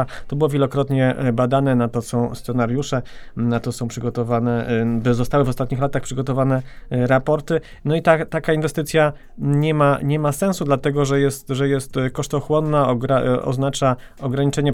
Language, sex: Polish, male